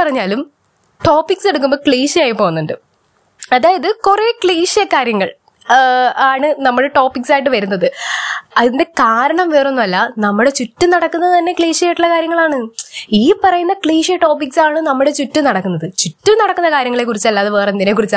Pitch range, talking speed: 225-325 Hz, 130 wpm